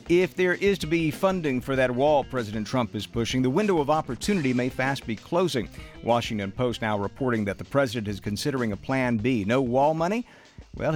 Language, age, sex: English, 50-69, male